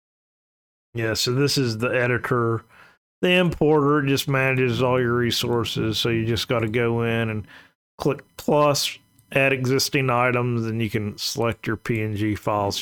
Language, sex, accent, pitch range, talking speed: English, male, American, 110-130 Hz, 150 wpm